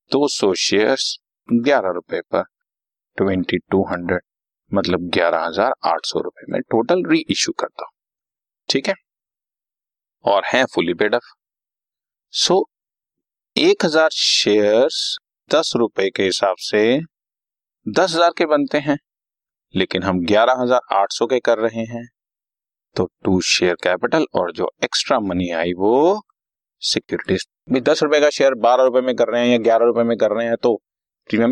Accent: native